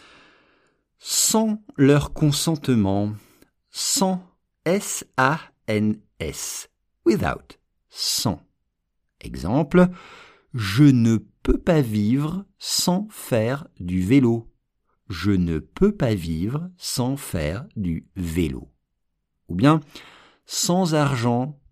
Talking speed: 85 wpm